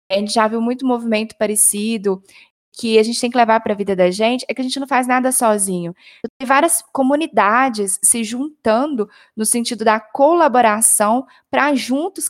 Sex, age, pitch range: female, 20-39, 215-275 Hz